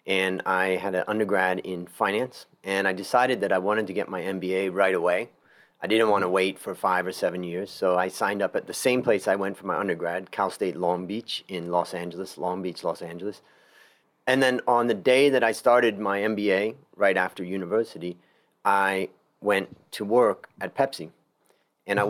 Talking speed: 200 wpm